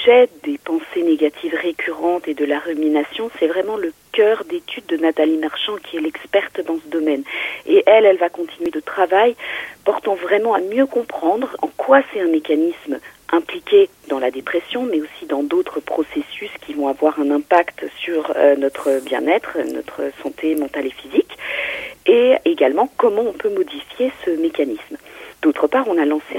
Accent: French